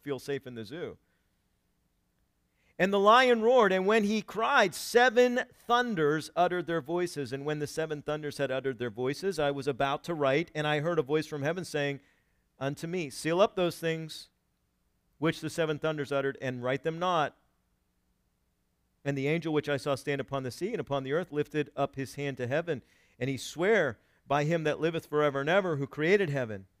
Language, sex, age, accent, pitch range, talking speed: English, male, 50-69, American, 135-185 Hz, 195 wpm